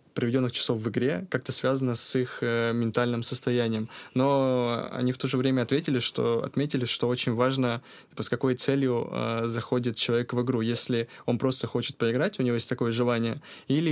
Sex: male